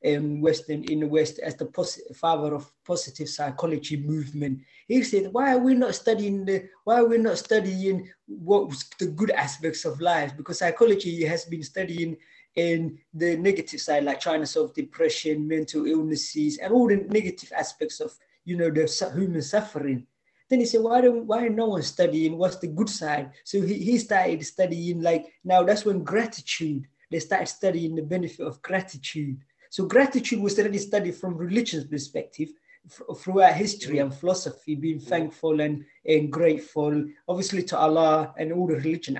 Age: 20-39